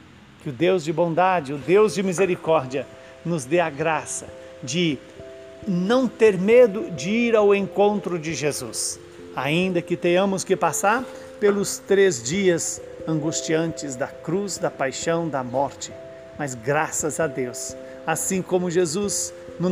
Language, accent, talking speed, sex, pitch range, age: Portuguese, Brazilian, 140 wpm, male, 140-185 Hz, 50-69